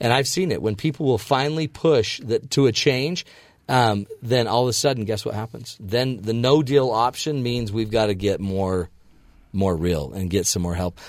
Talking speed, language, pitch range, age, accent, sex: 210 wpm, English, 105-130 Hz, 40-59, American, male